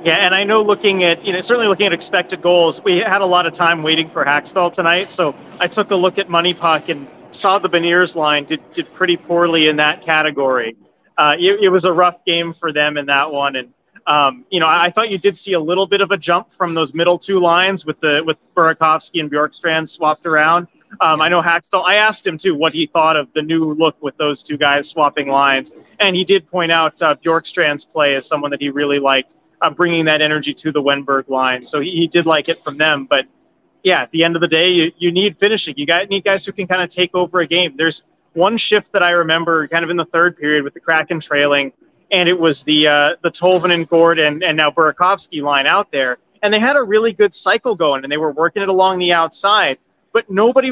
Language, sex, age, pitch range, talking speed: English, male, 30-49, 155-190 Hz, 245 wpm